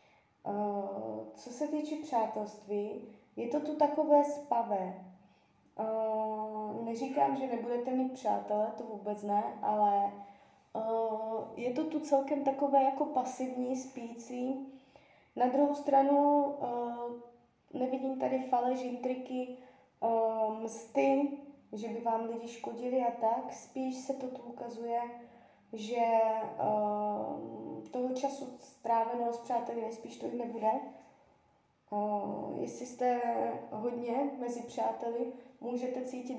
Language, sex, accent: Czech, female, native